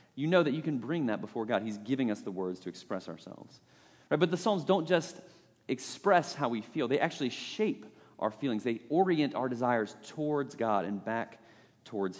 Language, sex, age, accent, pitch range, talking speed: English, male, 30-49, American, 110-150 Hz, 195 wpm